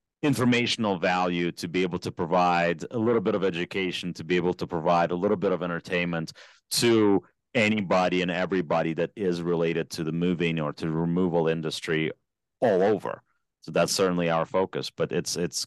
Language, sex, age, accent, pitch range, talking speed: English, male, 30-49, American, 80-95 Hz, 175 wpm